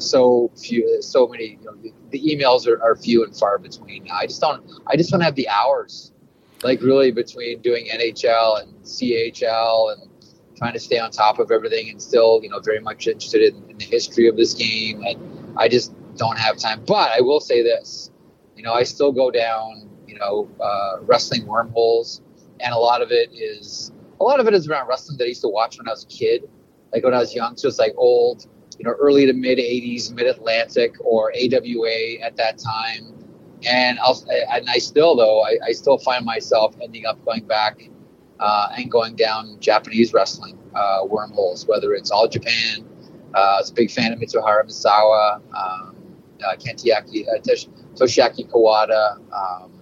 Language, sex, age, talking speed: English, male, 30-49, 185 wpm